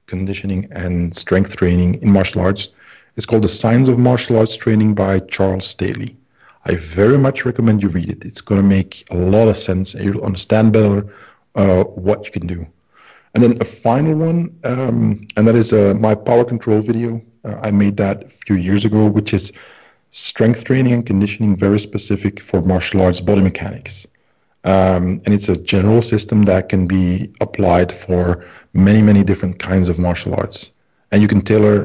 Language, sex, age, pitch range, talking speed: English, male, 40-59, 95-110 Hz, 185 wpm